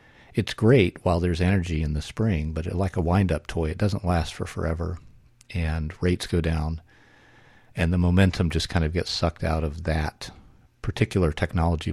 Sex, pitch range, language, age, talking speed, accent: male, 85-105 Hz, English, 50-69, 175 wpm, American